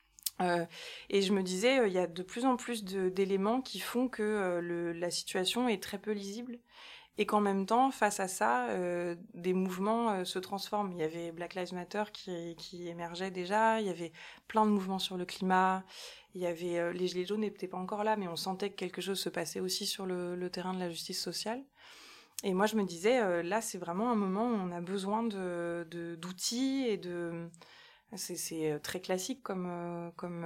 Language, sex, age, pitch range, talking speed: French, female, 20-39, 175-210 Hz, 220 wpm